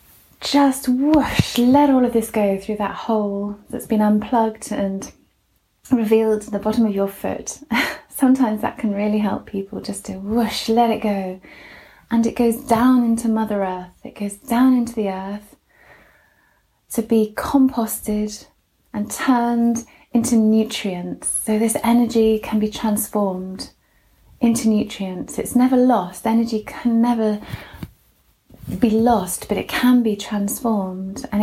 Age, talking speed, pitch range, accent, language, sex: 30-49, 145 wpm, 200-235 Hz, British, English, female